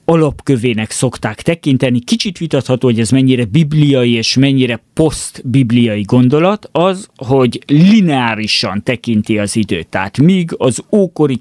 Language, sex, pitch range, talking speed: Hungarian, male, 115-145 Hz, 120 wpm